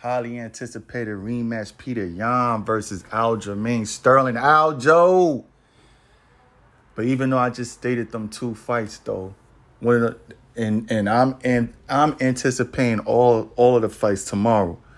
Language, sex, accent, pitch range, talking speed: English, male, American, 115-130 Hz, 130 wpm